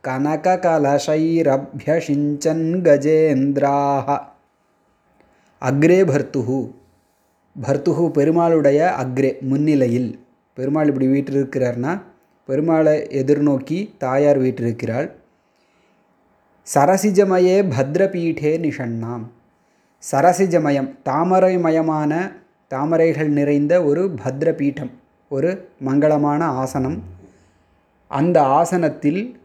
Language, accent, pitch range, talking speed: Tamil, native, 135-170 Hz, 60 wpm